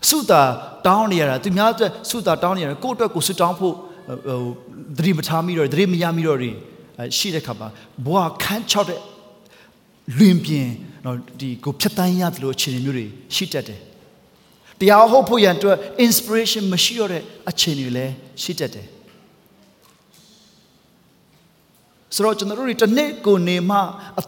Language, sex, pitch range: English, male, 140-205 Hz